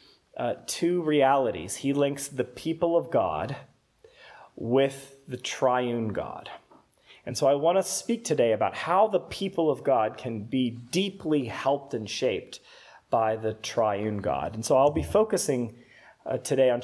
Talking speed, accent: 155 wpm, American